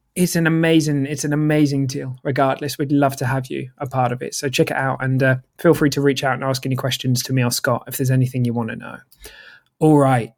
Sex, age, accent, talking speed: male, 20-39, British, 260 wpm